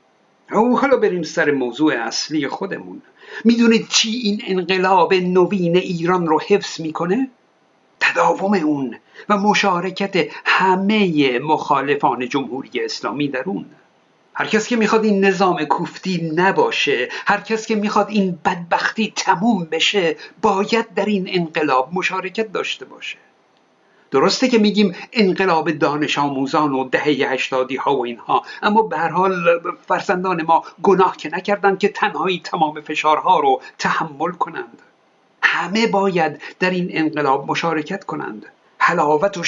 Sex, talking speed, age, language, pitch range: male, 130 wpm, 50-69, Persian, 160-215 Hz